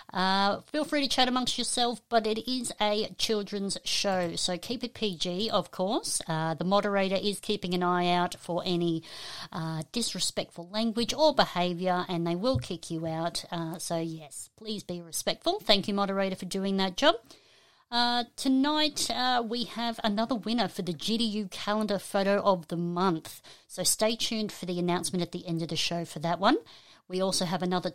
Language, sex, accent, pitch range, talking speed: English, female, Australian, 175-220 Hz, 185 wpm